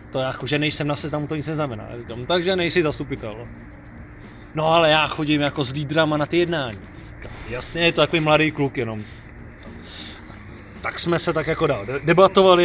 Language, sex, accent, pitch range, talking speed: Czech, male, native, 120-150 Hz, 185 wpm